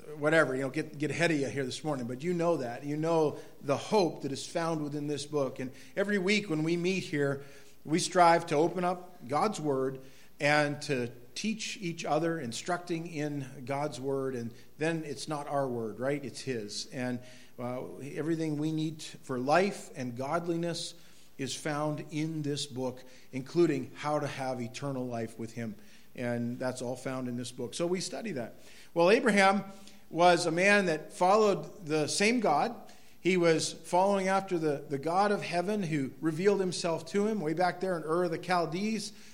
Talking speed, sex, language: 185 wpm, male, English